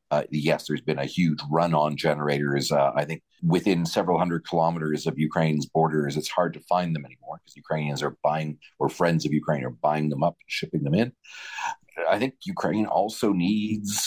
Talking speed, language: 195 wpm, English